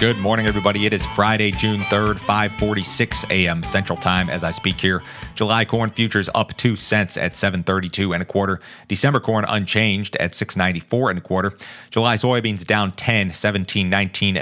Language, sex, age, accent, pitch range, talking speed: English, male, 30-49, American, 95-110 Hz, 165 wpm